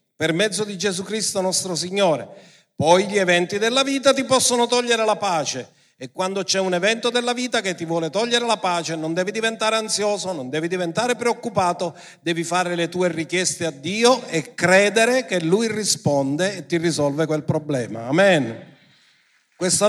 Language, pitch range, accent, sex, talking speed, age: Italian, 155-205 Hz, native, male, 170 wpm, 50-69